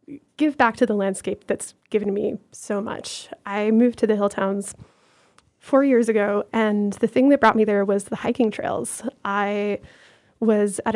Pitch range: 200-230 Hz